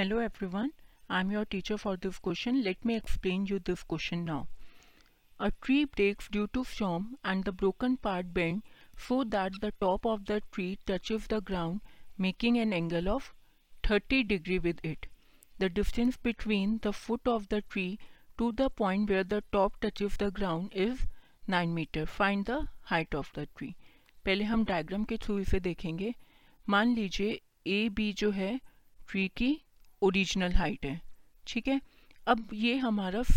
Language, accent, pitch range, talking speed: Hindi, native, 190-240 Hz, 170 wpm